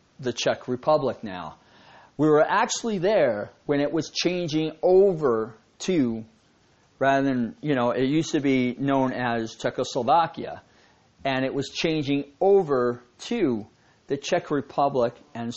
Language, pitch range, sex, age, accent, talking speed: English, 130-175 Hz, male, 40-59, American, 135 wpm